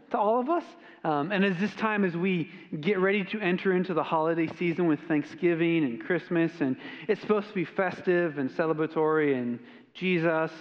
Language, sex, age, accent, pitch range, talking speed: English, male, 40-59, American, 145-205 Hz, 185 wpm